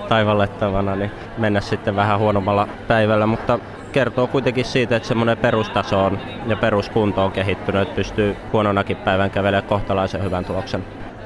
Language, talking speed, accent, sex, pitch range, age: Finnish, 145 wpm, native, male, 95-110 Hz, 20-39